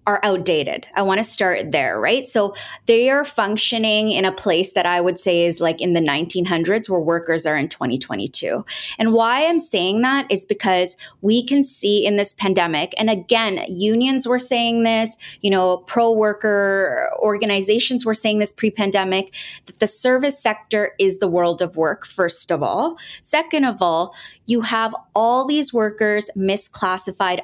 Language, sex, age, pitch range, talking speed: English, female, 20-39, 180-225 Hz, 170 wpm